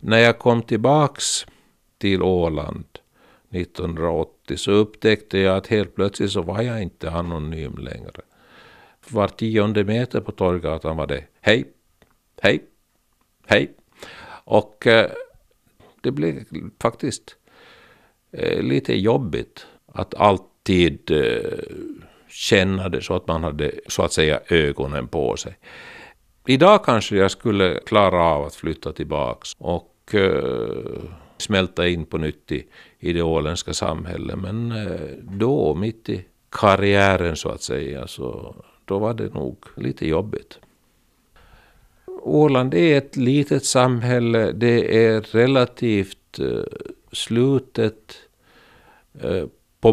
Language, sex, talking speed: Swedish, male, 110 wpm